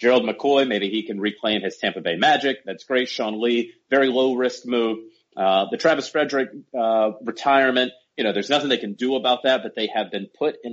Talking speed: 215 wpm